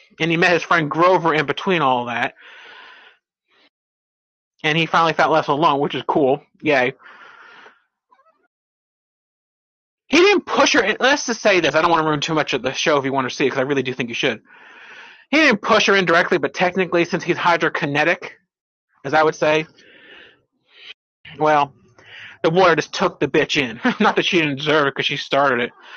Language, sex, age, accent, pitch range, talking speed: English, male, 30-49, American, 155-225 Hz, 200 wpm